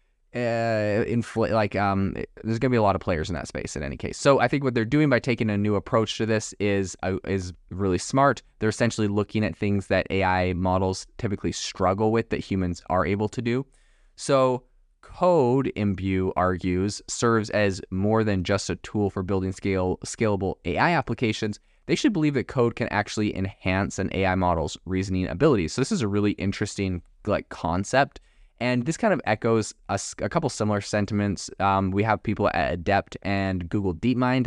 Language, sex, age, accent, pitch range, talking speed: English, male, 20-39, American, 95-115 Hz, 190 wpm